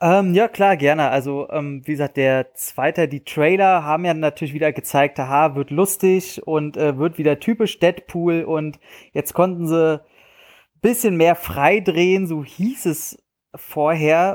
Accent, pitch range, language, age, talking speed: German, 150-185 Hz, German, 30-49, 155 wpm